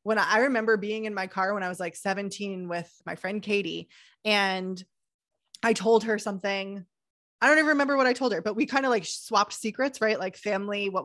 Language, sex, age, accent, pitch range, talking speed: English, female, 20-39, American, 185-250 Hz, 225 wpm